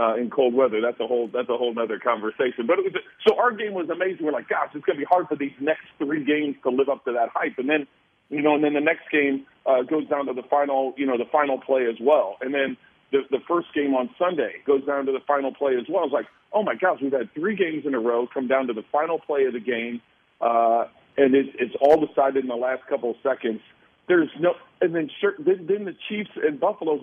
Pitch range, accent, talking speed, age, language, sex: 125-155 Hz, American, 270 wpm, 50-69, English, male